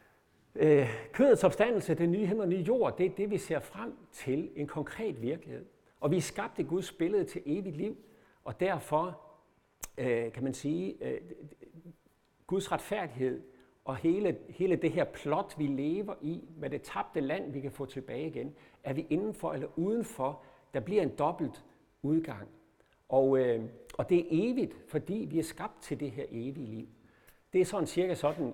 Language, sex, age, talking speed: Danish, male, 60-79, 170 wpm